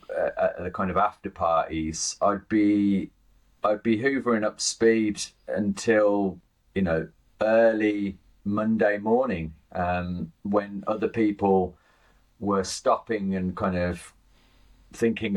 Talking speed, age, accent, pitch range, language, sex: 115 wpm, 30-49, British, 85-110 Hz, English, male